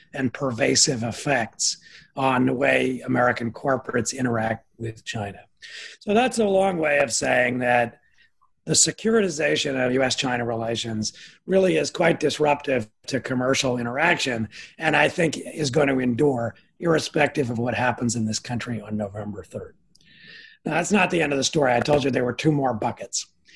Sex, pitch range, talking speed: male, 125-165 Hz, 165 wpm